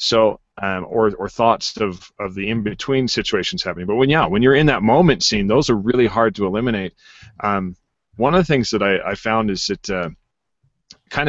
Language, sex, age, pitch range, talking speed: English, male, 40-59, 95-115 Hz, 205 wpm